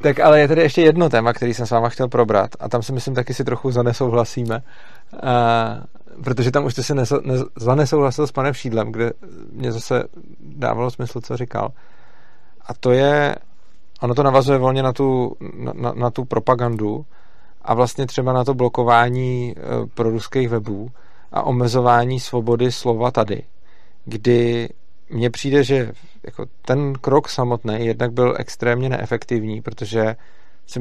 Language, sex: Czech, male